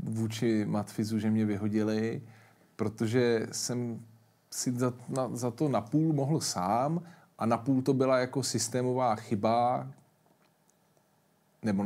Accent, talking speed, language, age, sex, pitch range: native, 105 wpm, Czech, 40-59, male, 105-150 Hz